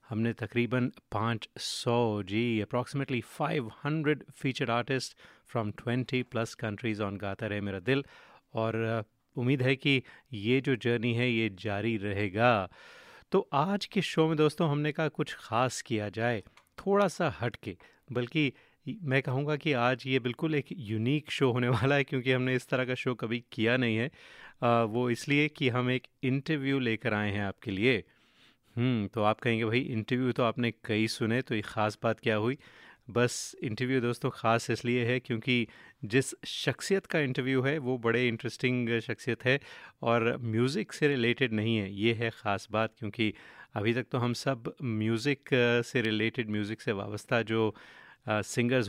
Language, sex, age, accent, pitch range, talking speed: Hindi, male, 30-49, native, 110-130 Hz, 165 wpm